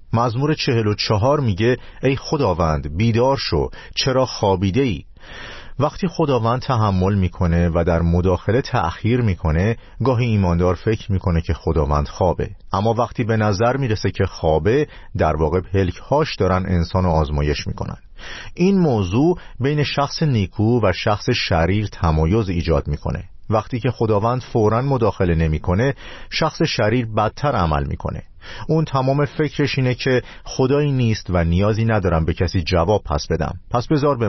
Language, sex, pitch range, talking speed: Persian, male, 85-125 Hz, 145 wpm